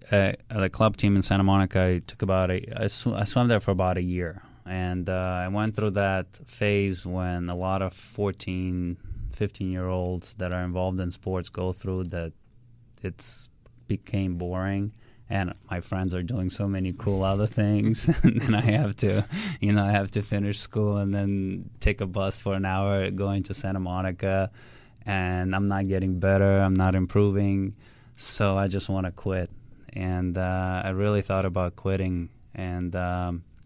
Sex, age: male, 20-39